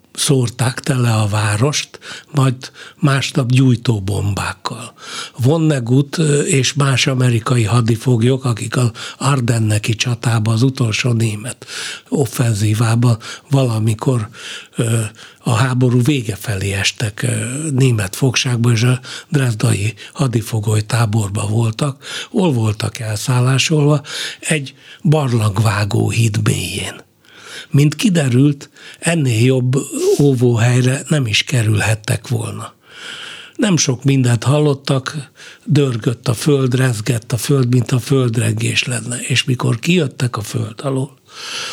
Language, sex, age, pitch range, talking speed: Hungarian, male, 60-79, 115-140 Hz, 105 wpm